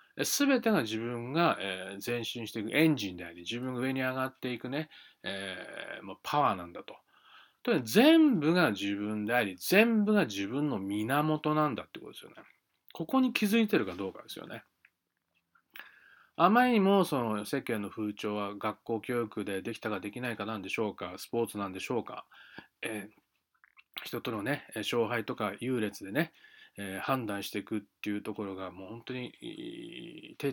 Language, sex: Japanese, male